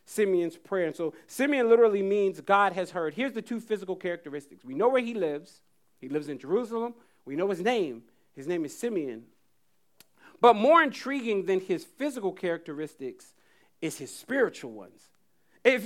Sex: male